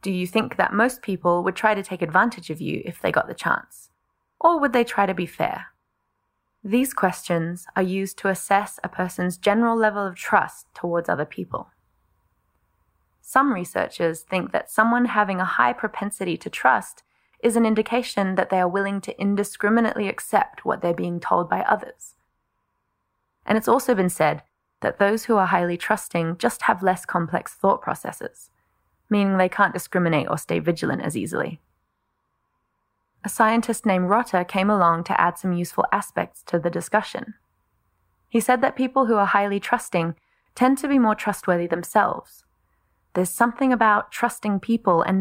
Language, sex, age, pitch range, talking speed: English, female, 20-39, 175-215 Hz, 170 wpm